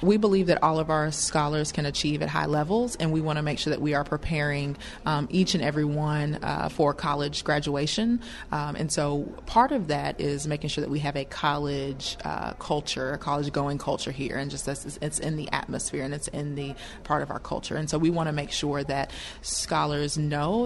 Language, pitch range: English, 145-155 Hz